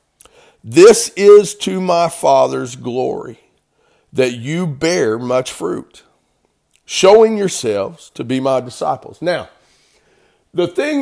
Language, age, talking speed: English, 50-69, 110 wpm